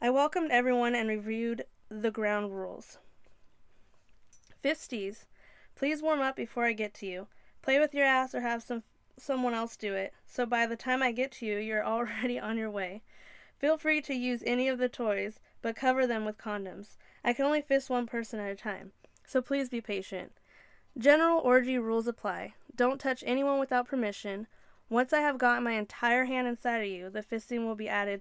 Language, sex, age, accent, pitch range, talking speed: English, female, 10-29, American, 210-260 Hz, 195 wpm